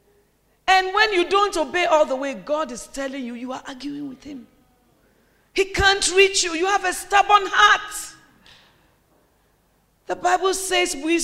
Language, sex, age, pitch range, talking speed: English, female, 40-59, 235-340 Hz, 160 wpm